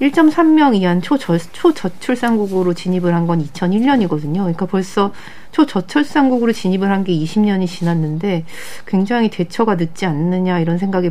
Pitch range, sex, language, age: 175-225 Hz, female, Korean, 40-59